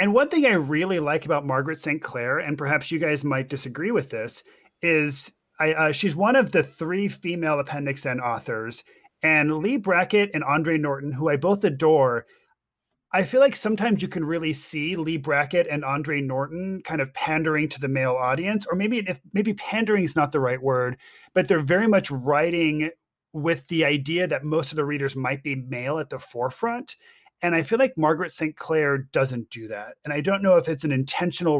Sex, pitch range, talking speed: male, 145-185 Hz, 205 wpm